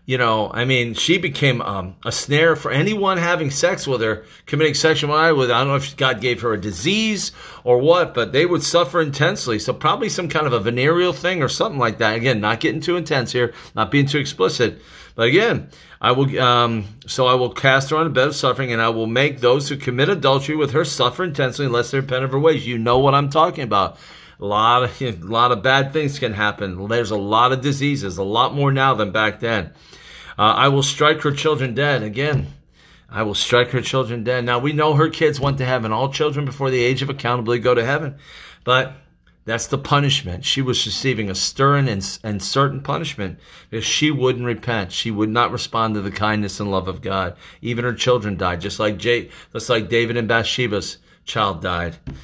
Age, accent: 40-59, American